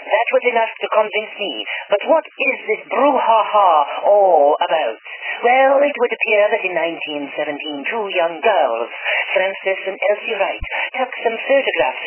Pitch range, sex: 170-255 Hz, male